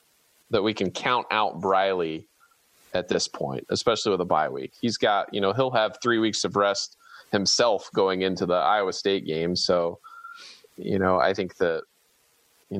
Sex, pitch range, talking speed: male, 100-160 Hz, 180 wpm